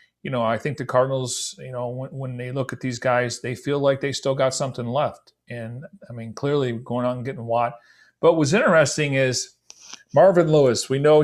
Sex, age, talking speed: male, 40-59, 215 wpm